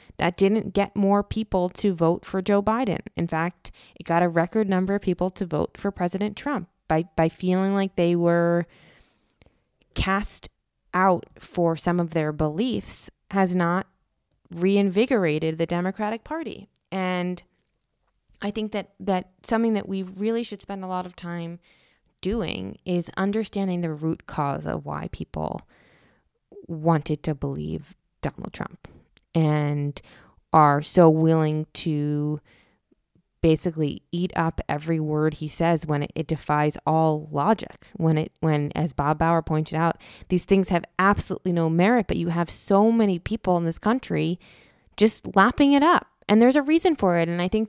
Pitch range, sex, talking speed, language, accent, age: 160-200 Hz, female, 160 wpm, English, American, 20-39